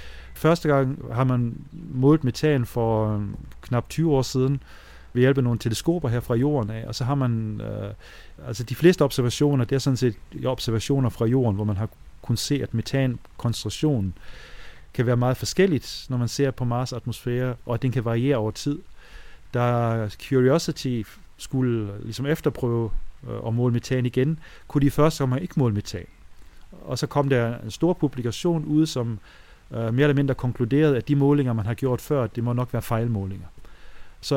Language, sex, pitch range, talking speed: Danish, male, 115-140 Hz, 175 wpm